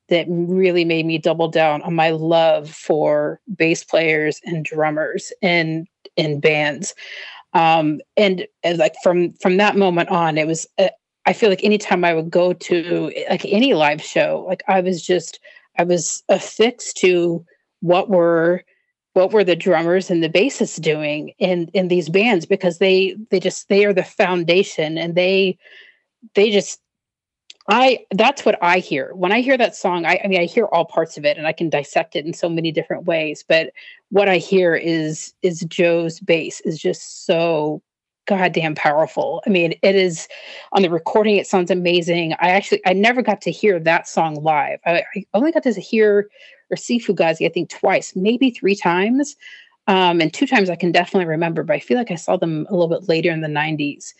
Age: 30-49